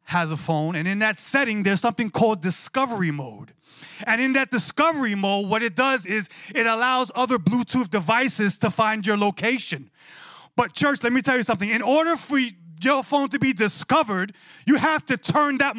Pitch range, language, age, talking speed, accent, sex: 180-255 Hz, English, 30-49, 190 wpm, American, male